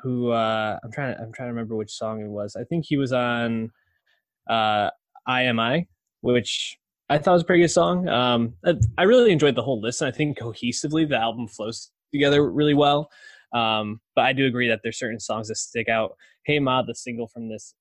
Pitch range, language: 110-135 Hz, English